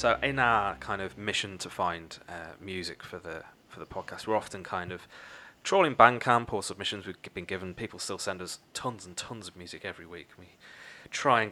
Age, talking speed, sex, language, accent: 20-39, 215 wpm, male, English, British